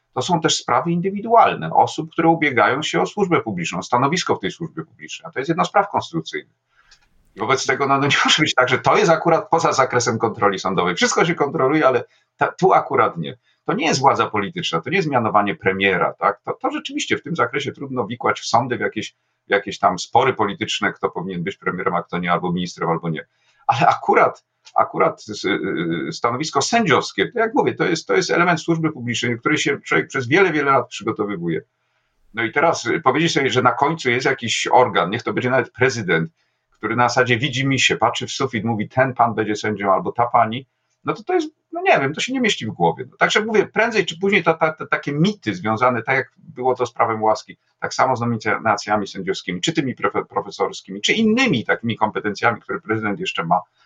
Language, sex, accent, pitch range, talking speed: Polish, male, native, 115-170 Hz, 205 wpm